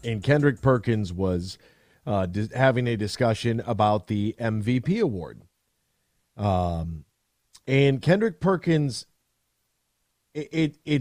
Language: English